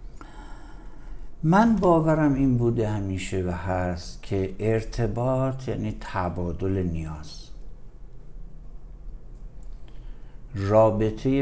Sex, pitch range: male, 95-125 Hz